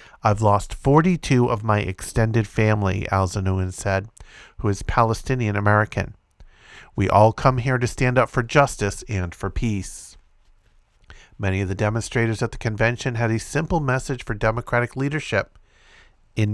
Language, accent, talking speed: English, American, 140 wpm